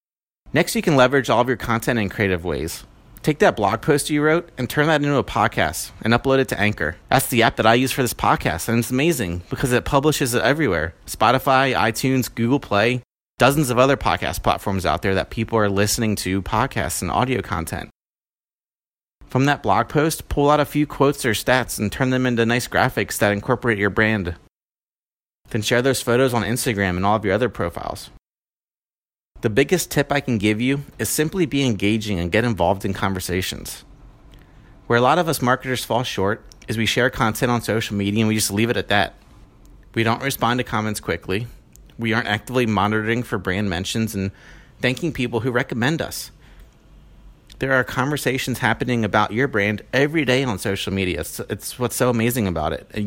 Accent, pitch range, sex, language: American, 105-130 Hz, male, English